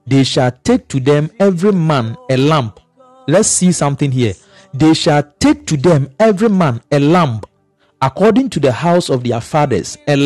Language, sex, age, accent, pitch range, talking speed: English, male, 40-59, Nigerian, 140-215 Hz, 175 wpm